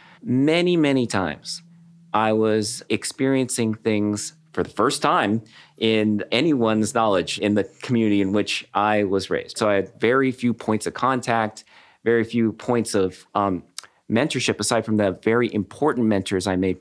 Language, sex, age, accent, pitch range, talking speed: English, male, 40-59, American, 100-140 Hz, 155 wpm